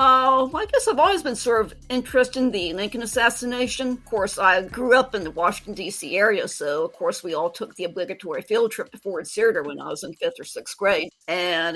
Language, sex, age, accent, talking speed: English, female, 50-69, American, 235 wpm